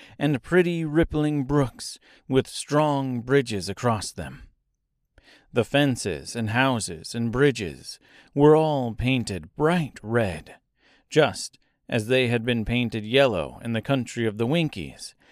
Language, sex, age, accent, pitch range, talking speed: English, male, 40-59, American, 110-145 Hz, 130 wpm